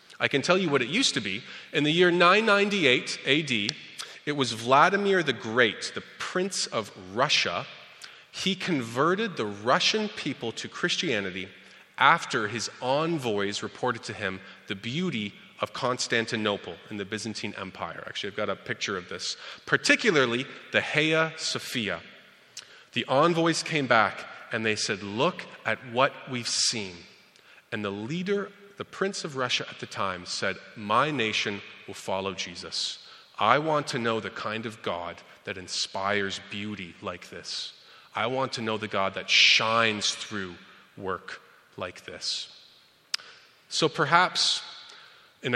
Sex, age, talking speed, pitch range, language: male, 30-49, 150 wpm, 105-180 Hz, English